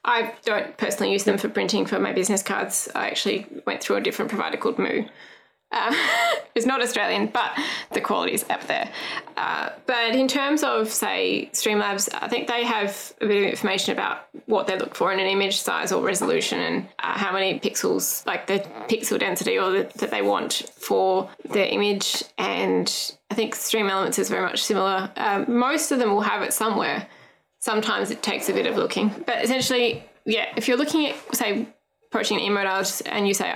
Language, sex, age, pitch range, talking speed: English, female, 10-29, 205-245 Hz, 200 wpm